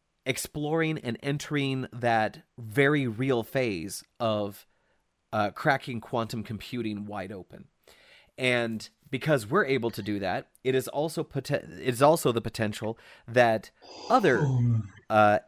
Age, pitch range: 30-49, 105-140 Hz